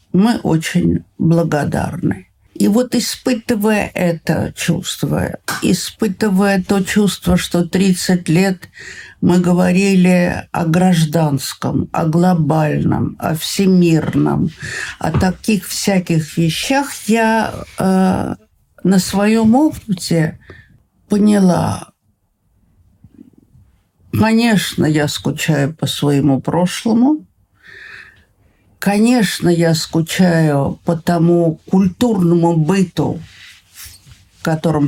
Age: 50-69